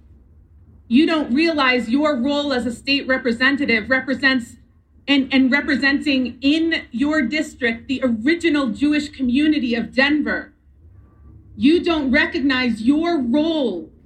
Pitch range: 180-295 Hz